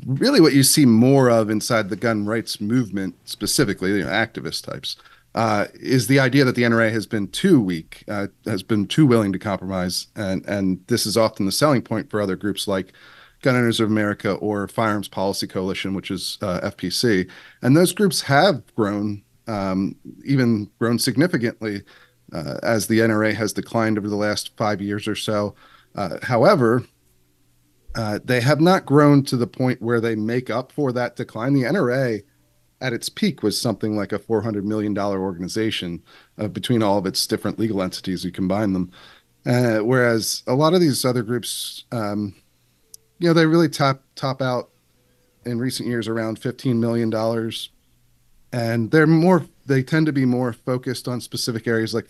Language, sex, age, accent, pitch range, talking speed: English, male, 40-59, American, 100-125 Hz, 185 wpm